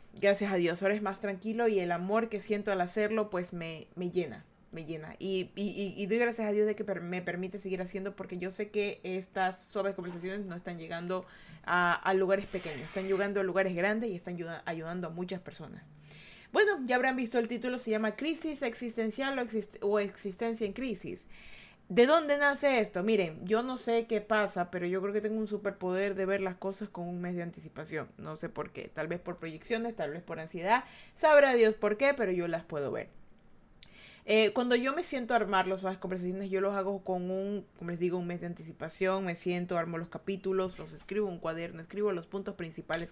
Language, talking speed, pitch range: Spanish, 215 wpm, 180-215 Hz